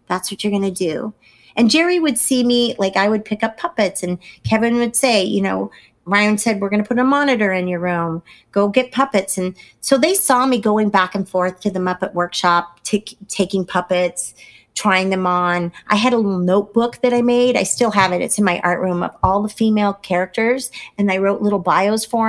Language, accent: English, American